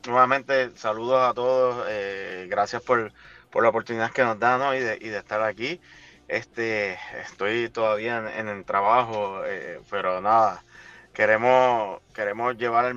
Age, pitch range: 30-49, 110-130 Hz